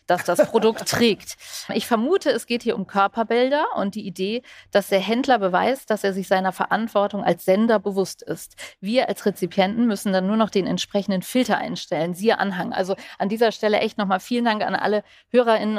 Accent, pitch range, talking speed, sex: German, 195-235 Hz, 195 wpm, female